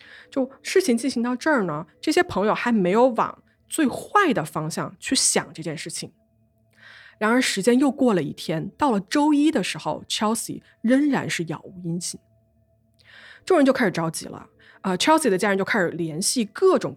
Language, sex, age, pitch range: Chinese, female, 20-39, 170-260 Hz